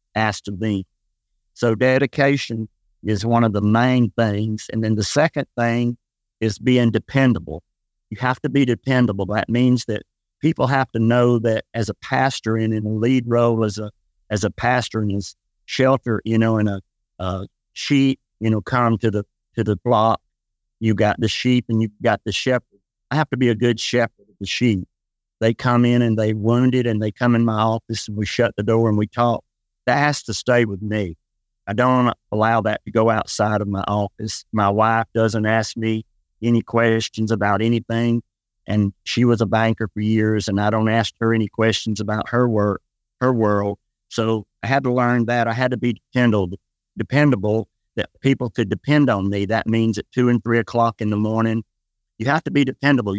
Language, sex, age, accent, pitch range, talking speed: English, male, 50-69, American, 105-120 Hz, 200 wpm